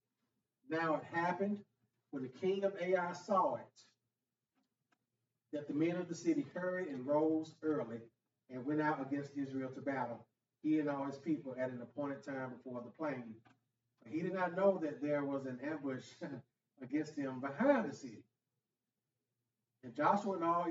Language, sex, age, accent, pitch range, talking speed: English, male, 40-59, American, 125-160 Hz, 170 wpm